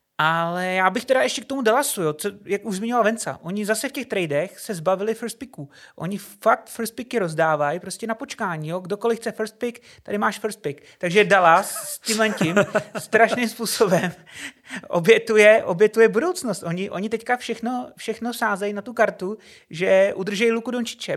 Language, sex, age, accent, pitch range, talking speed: Czech, male, 30-49, native, 180-230 Hz, 170 wpm